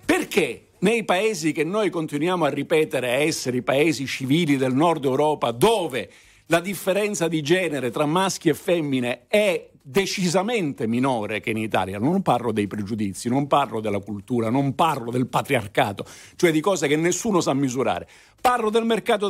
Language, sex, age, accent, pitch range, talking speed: Italian, male, 50-69, native, 125-205 Hz, 160 wpm